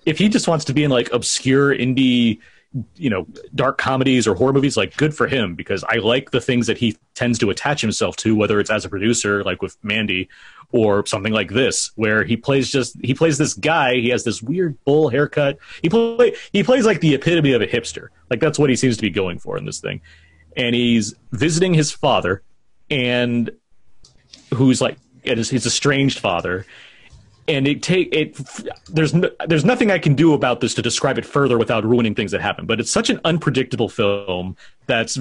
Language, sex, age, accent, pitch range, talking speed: English, male, 30-49, American, 115-155 Hz, 205 wpm